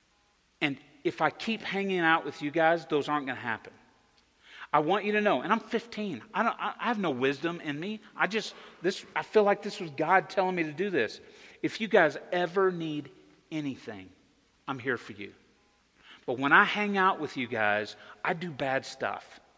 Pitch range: 120-185 Hz